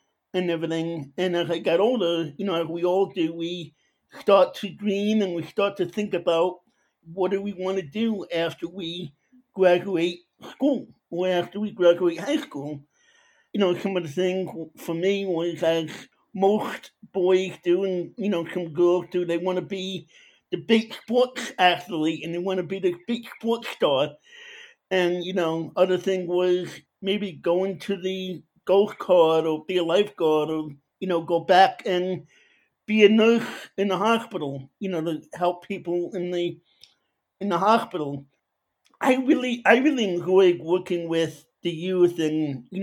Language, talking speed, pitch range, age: English, 175 wpm, 170-200 Hz, 50-69